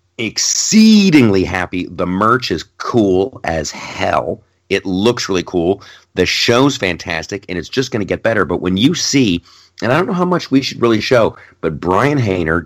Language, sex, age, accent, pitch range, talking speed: English, male, 40-59, American, 85-110 Hz, 185 wpm